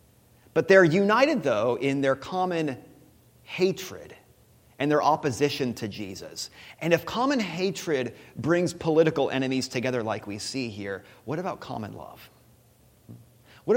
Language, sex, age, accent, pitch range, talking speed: English, male, 30-49, American, 150-195 Hz, 130 wpm